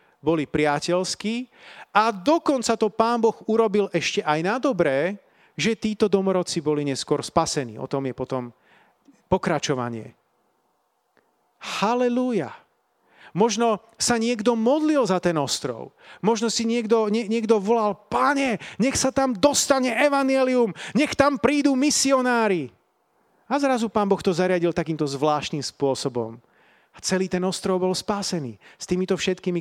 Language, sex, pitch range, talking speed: Slovak, male, 155-230 Hz, 130 wpm